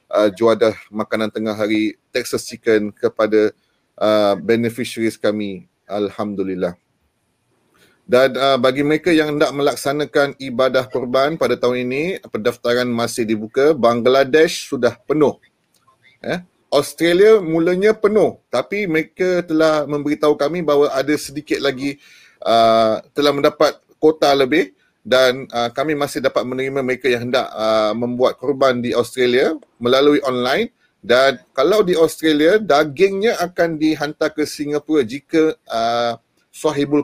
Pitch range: 120-150 Hz